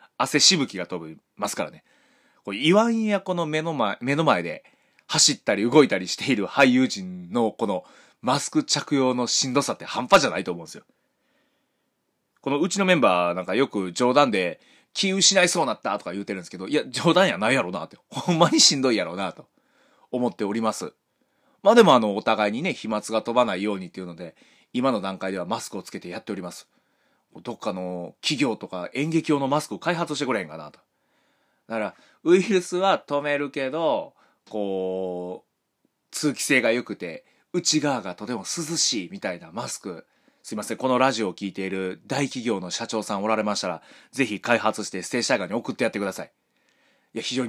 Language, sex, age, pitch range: Japanese, male, 30-49, 105-175 Hz